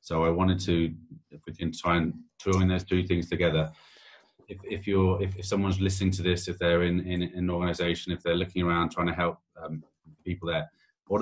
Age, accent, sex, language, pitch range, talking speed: 30-49, British, male, English, 80-95 Hz, 220 wpm